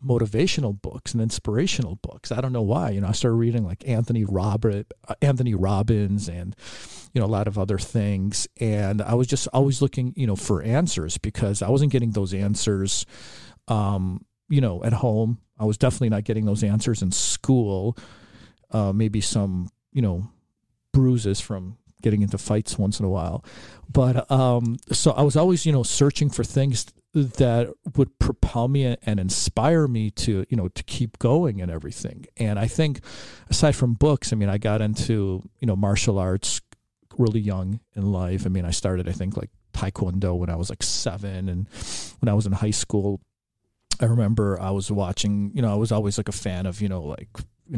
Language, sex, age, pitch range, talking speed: English, male, 50-69, 100-120 Hz, 195 wpm